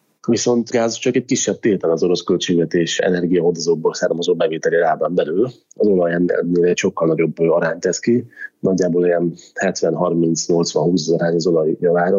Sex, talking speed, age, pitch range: male, 145 wpm, 30-49, 85-115 Hz